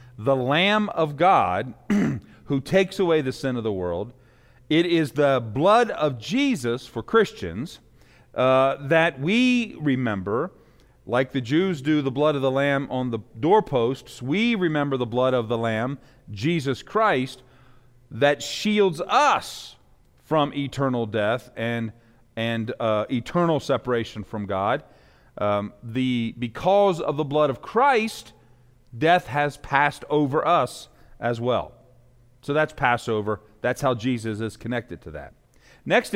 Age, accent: 40-59, American